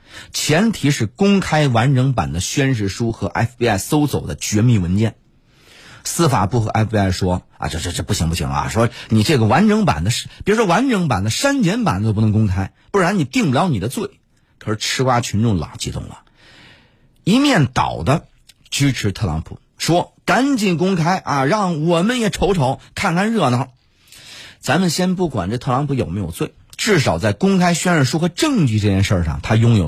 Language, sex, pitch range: Chinese, male, 105-155 Hz